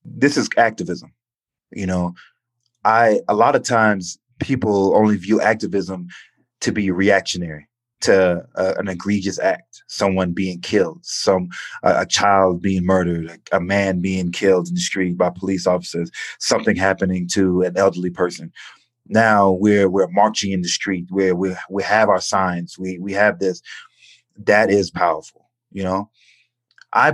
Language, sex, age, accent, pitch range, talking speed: English, male, 30-49, American, 95-120 Hz, 155 wpm